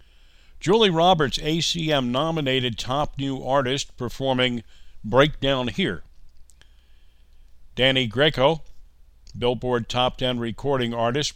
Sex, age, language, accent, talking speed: male, 50-69, English, American, 85 wpm